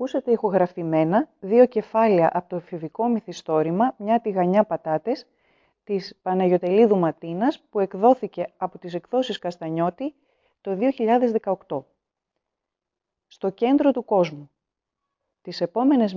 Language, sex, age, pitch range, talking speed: Greek, female, 30-49, 180-230 Hz, 105 wpm